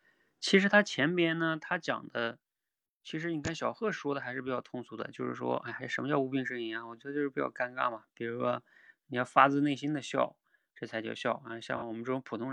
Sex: male